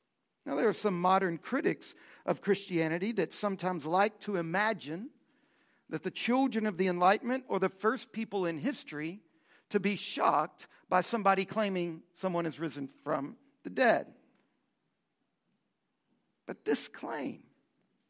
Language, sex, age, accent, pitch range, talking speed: English, male, 50-69, American, 190-270 Hz, 135 wpm